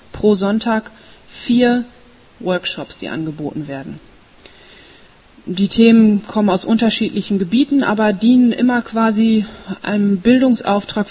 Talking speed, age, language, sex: 105 wpm, 30-49, German, female